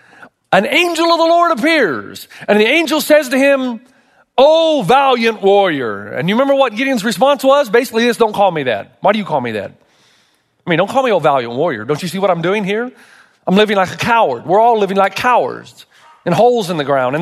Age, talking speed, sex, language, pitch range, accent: 40-59, 225 wpm, male, English, 195-270 Hz, American